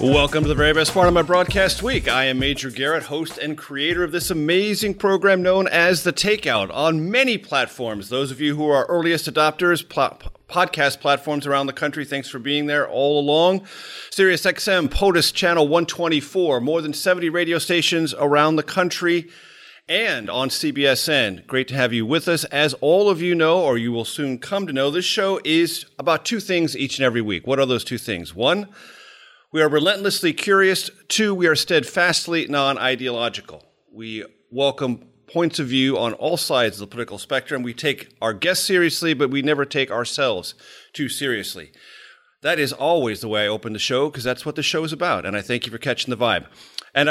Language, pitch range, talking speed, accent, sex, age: English, 130-175 Hz, 200 wpm, American, male, 40-59